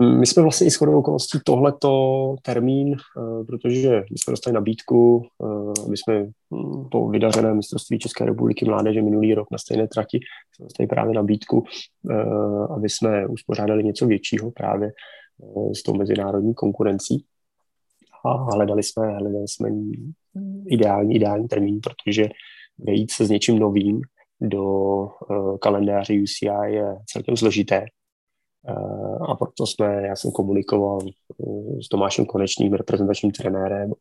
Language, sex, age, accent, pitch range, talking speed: Czech, male, 20-39, native, 100-115 Hz, 125 wpm